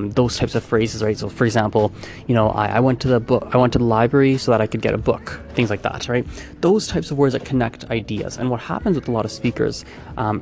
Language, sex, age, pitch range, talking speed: English, male, 20-39, 110-125 Hz, 275 wpm